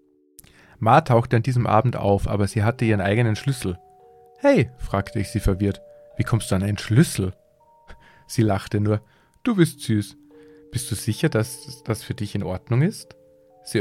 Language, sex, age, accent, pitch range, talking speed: German, male, 40-59, German, 100-125 Hz, 175 wpm